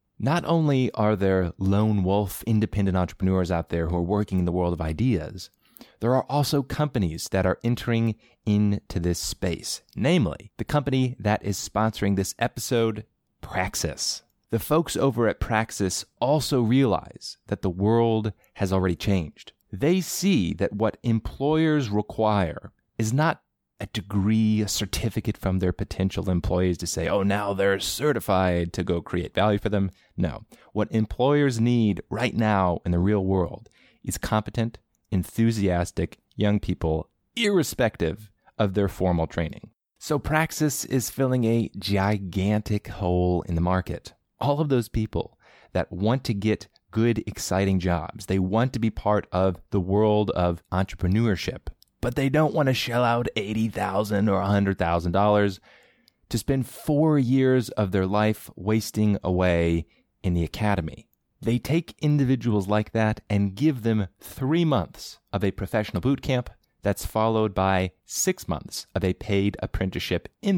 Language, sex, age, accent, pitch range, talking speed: English, male, 30-49, American, 95-115 Hz, 150 wpm